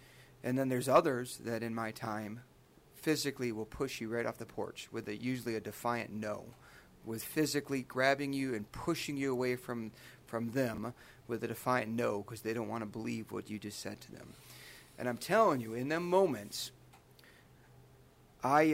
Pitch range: 115-135 Hz